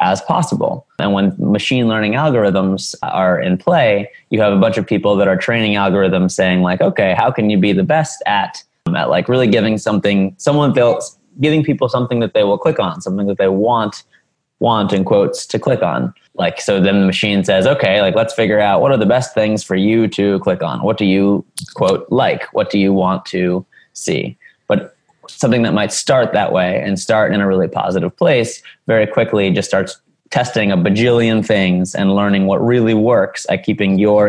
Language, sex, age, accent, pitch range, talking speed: English, male, 20-39, American, 95-115 Hz, 205 wpm